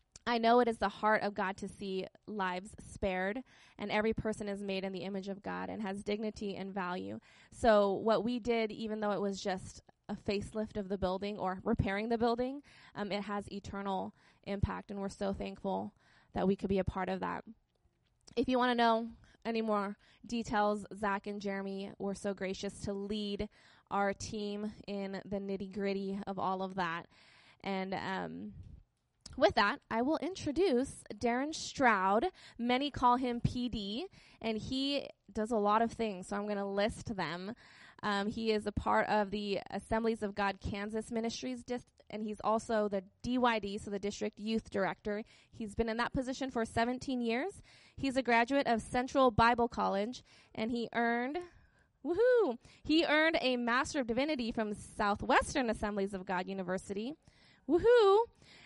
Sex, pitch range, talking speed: female, 200-235 Hz, 170 wpm